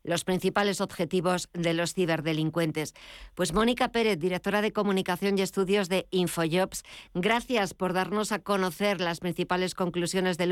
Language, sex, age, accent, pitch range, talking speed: Spanish, female, 50-69, Spanish, 175-195 Hz, 145 wpm